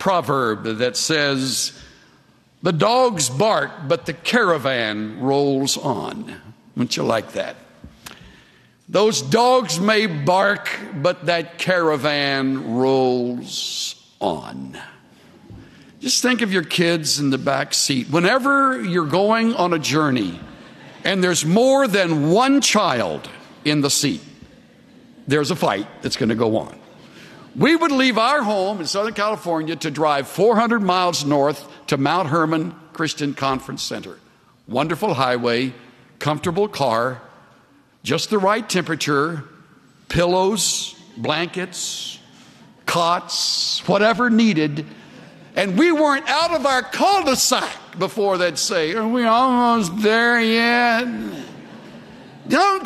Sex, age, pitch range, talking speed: male, 60-79, 145-230 Hz, 120 wpm